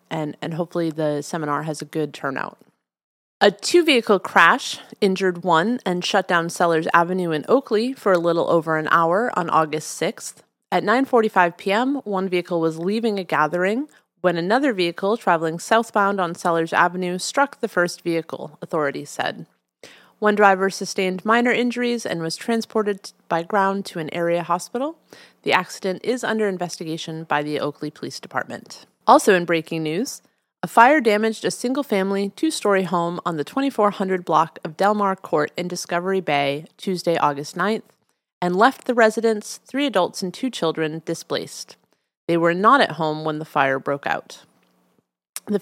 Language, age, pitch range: English, 30-49, 165-210 Hz